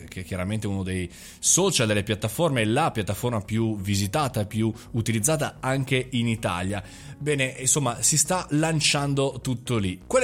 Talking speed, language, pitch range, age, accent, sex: 160 wpm, Italian, 110-150 Hz, 20-39, native, male